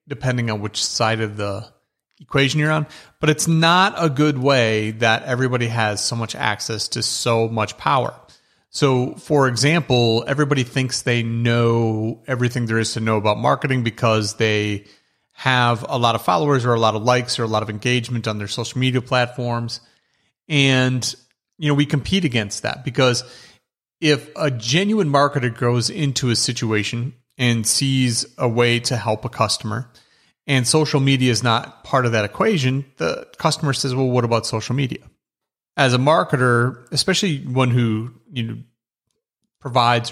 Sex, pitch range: male, 110-135 Hz